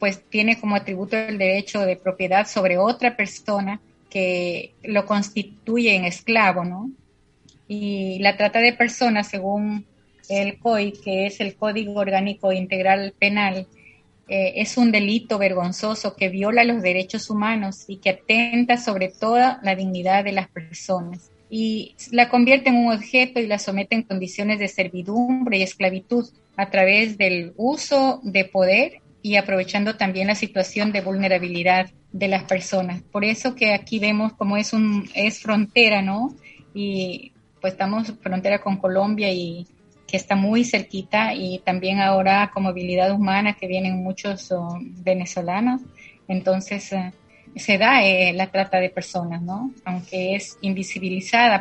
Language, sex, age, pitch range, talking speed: Italian, female, 30-49, 190-215 Hz, 150 wpm